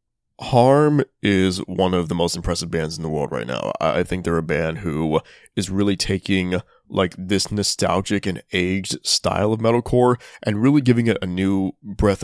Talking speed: 180 wpm